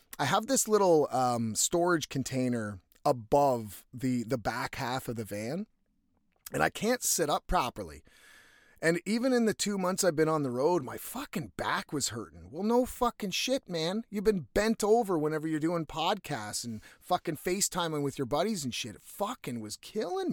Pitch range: 125-205 Hz